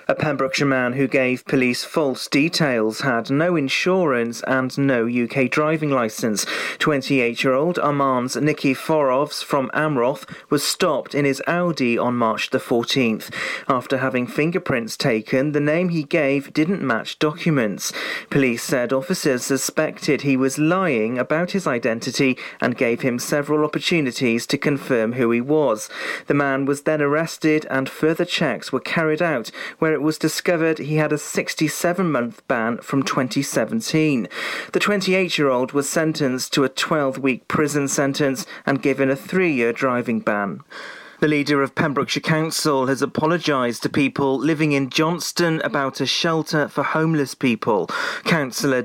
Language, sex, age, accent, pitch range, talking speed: English, male, 40-59, British, 135-155 Hz, 145 wpm